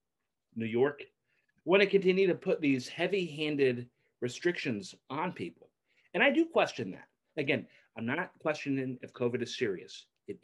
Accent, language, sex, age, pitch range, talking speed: American, English, male, 30-49, 125-165 Hz, 150 wpm